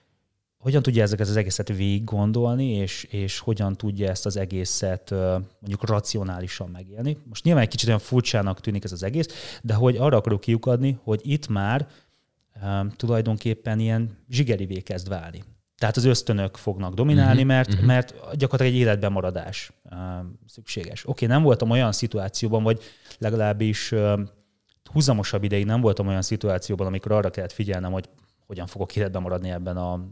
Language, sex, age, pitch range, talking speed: Hungarian, male, 30-49, 100-125 Hz, 145 wpm